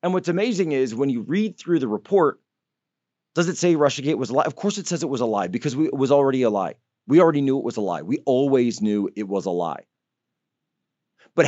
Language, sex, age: English, male, 30-49